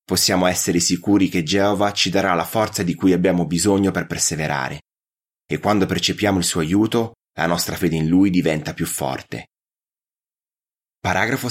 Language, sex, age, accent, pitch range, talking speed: Italian, male, 30-49, native, 85-115 Hz, 155 wpm